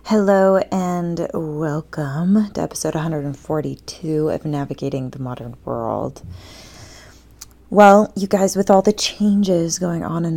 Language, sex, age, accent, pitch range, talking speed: English, female, 20-39, American, 140-185 Hz, 120 wpm